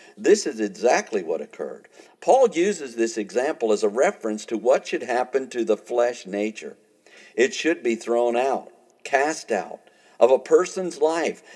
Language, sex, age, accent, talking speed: English, male, 50-69, American, 160 wpm